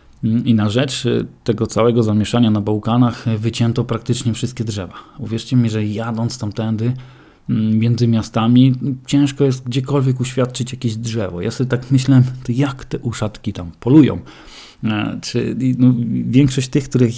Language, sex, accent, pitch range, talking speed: Polish, male, native, 105-125 Hz, 140 wpm